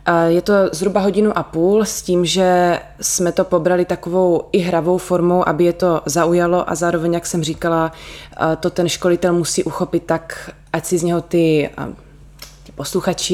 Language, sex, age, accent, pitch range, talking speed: Czech, female, 20-39, native, 155-175 Hz, 165 wpm